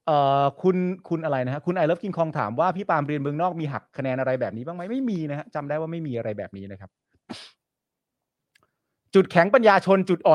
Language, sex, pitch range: Thai, male, 120-170 Hz